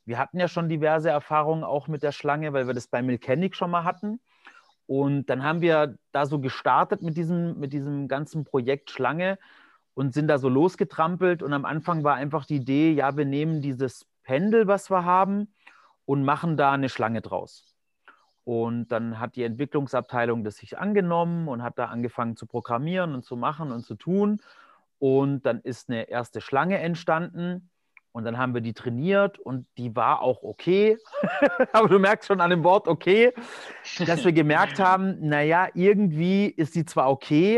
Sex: male